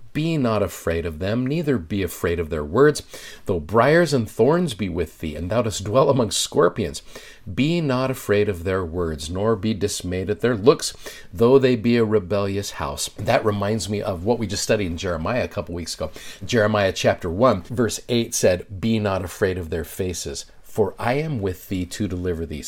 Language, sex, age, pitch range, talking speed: English, male, 50-69, 95-120 Hz, 200 wpm